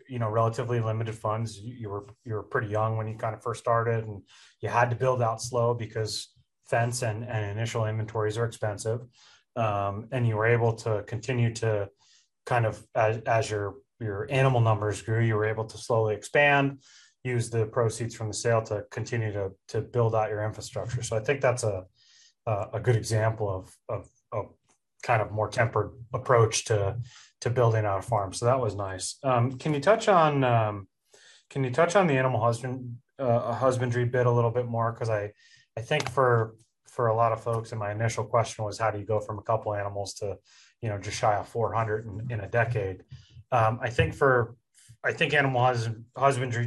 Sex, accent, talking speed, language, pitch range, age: male, American, 205 wpm, English, 110-125 Hz, 30-49